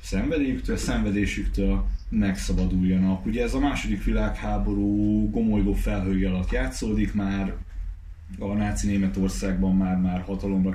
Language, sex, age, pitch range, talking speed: Hungarian, male, 30-49, 90-100 Hz, 105 wpm